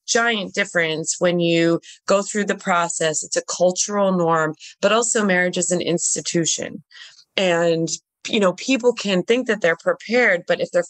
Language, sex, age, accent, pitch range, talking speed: English, female, 20-39, American, 160-210 Hz, 165 wpm